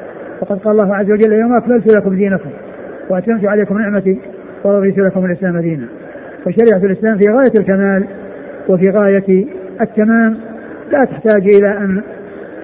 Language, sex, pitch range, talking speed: Arabic, male, 195-220 Hz, 135 wpm